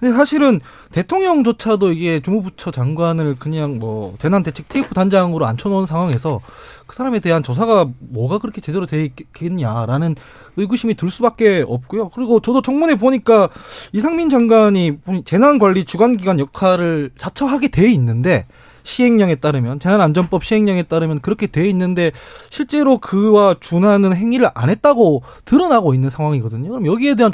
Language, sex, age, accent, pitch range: Korean, male, 20-39, native, 150-220 Hz